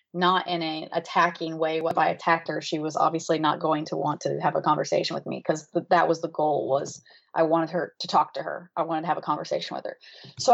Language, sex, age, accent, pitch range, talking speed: English, female, 20-39, American, 170-215 Hz, 255 wpm